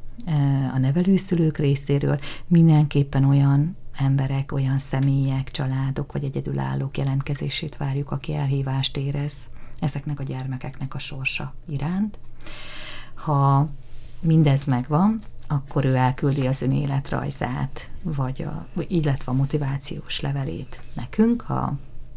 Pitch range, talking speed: 130-150 Hz, 105 wpm